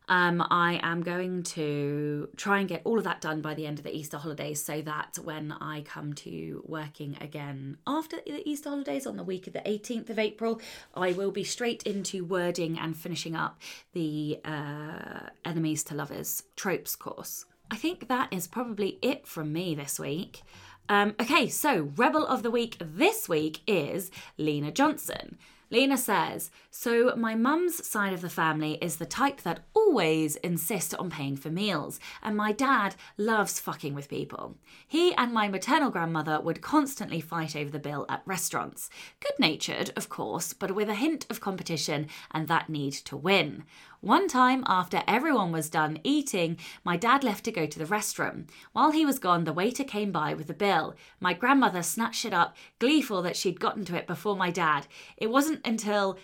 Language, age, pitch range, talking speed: English, 20-39, 160-235 Hz, 185 wpm